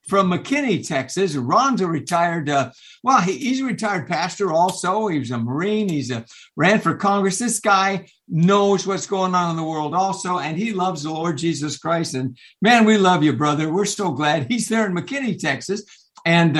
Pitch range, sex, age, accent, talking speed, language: 150-205 Hz, male, 60-79, American, 190 wpm, English